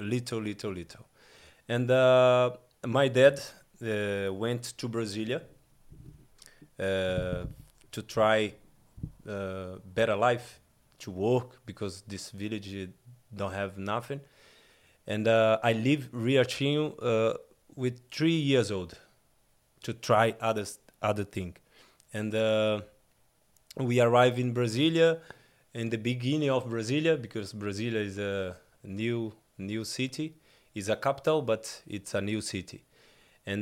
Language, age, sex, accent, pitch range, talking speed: English, 20-39, male, Brazilian, 105-125 Hz, 120 wpm